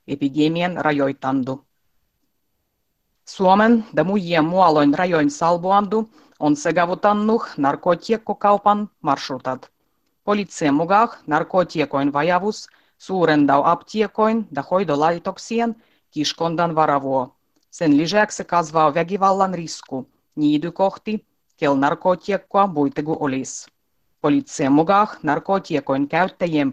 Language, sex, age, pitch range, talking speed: Finnish, female, 30-49, 150-205 Hz, 90 wpm